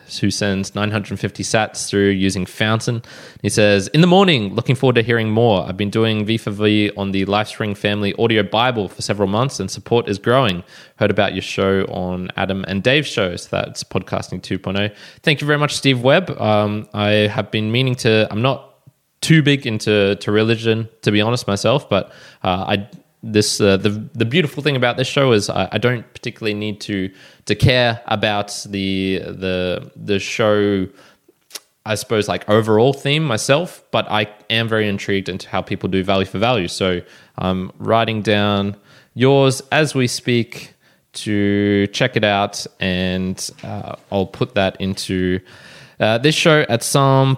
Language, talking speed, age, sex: English, 175 wpm, 20-39, male